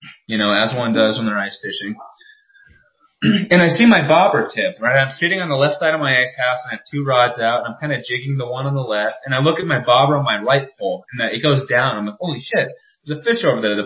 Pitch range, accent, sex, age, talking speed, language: 115-160 Hz, American, male, 20-39, 285 wpm, English